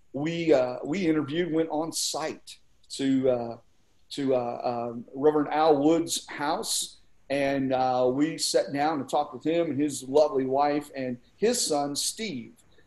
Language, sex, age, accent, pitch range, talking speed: English, male, 40-59, American, 135-180 Hz, 155 wpm